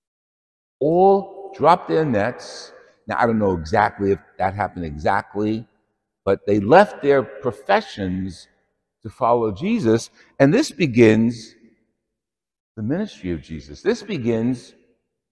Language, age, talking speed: English, 60-79, 120 wpm